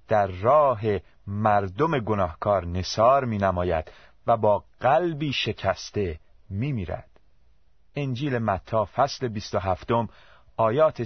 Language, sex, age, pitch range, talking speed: Persian, male, 30-49, 95-130 Hz, 110 wpm